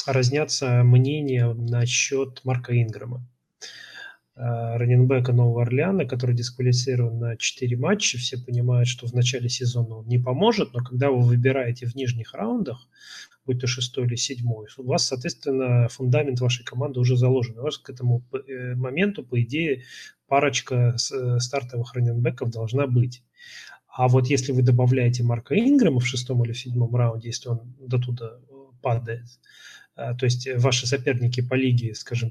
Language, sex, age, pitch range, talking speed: Russian, male, 30-49, 120-130 Hz, 145 wpm